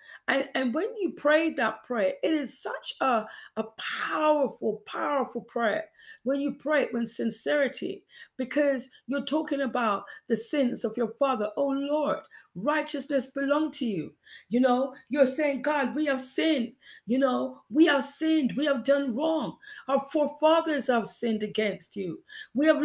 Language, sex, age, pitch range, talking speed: English, female, 40-59, 260-315 Hz, 160 wpm